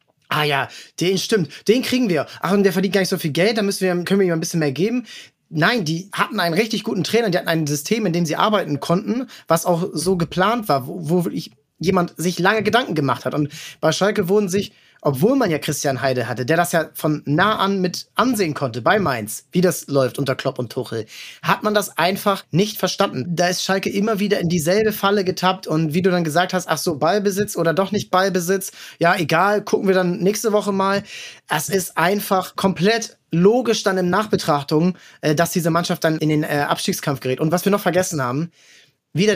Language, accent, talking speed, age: German, German, 220 wpm, 30-49